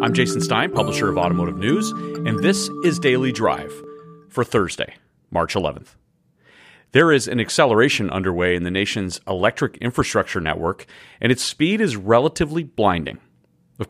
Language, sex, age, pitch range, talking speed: English, male, 40-59, 90-120 Hz, 145 wpm